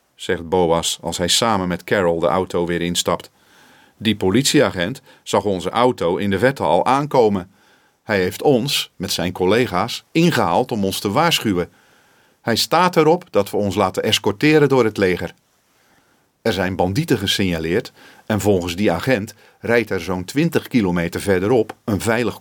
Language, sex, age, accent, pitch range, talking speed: Dutch, male, 40-59, Dutch, 90-130 Hz, 155 wpm